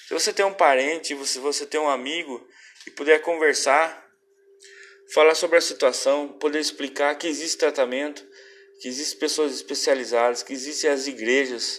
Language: Portuguese